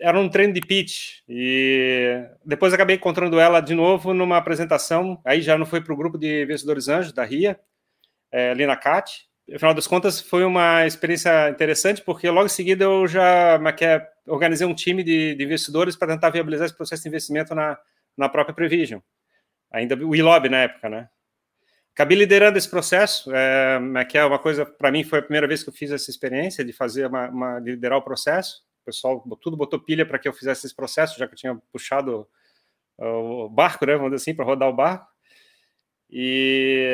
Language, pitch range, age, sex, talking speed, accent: Portuguese, 135-170 Hz, 30-49, male, 200 wpm, Brazilian